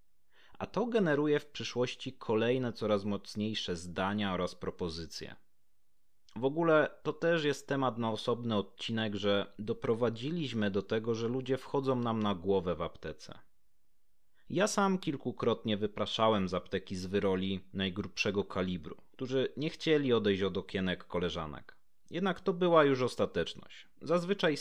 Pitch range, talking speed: 100-140 Hz, 135 wpm